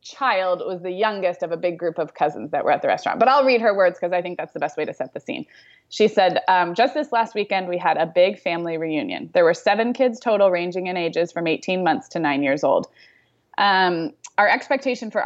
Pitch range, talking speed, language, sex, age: 165-215 Hz, 250 wpm, English, female, 20-39